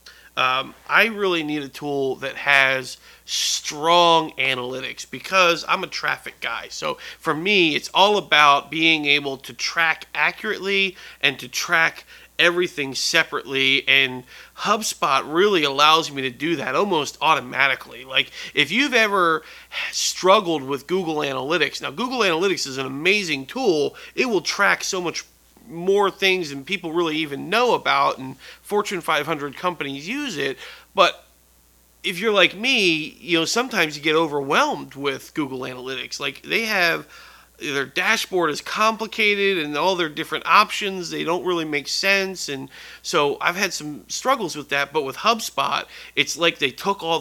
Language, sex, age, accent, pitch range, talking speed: English, male, 30-49, American, 140-190 Hz, 155 wpm